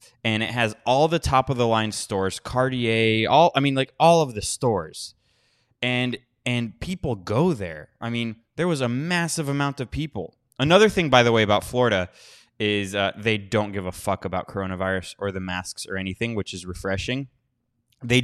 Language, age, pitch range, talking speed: English, 20-39, 100-125 Hz, 180 wpm